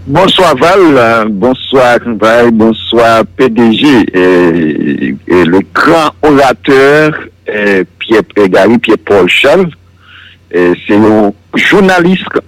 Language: English